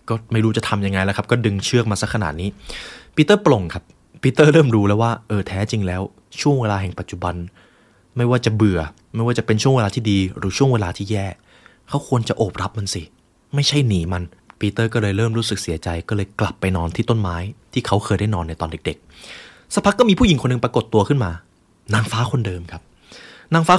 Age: 20-39